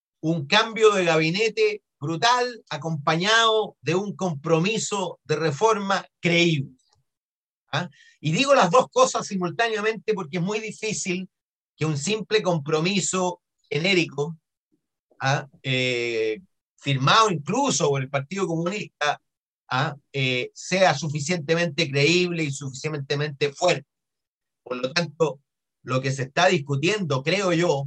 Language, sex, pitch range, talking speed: Spanish, male, 145-190 Hz, 115 wpm